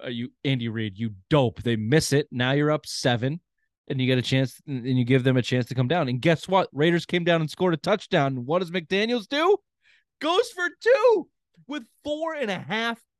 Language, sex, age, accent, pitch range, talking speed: English, male, 20-39, American, 130-185 Hz, 225 wpm